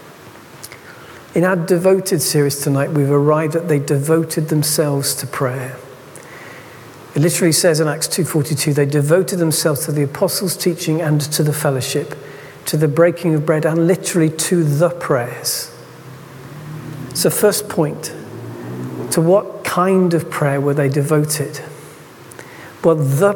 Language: English